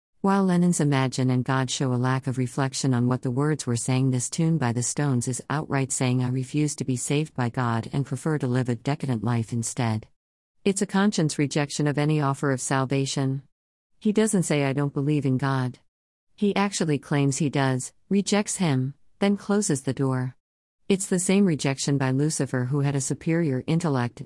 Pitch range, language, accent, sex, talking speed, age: 125-150 Hz, English, American, female, 195 wpm, 50-69